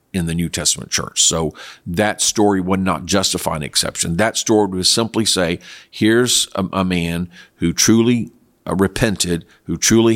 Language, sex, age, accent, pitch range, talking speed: English, male, 50-69, American, 90-105 Hz, 165 wpm